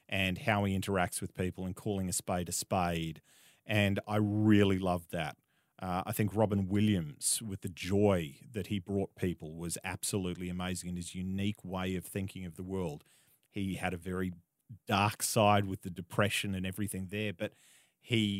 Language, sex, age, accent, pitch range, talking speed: English, male, 30-49, Australian, 90-110 Hz, 180 wpm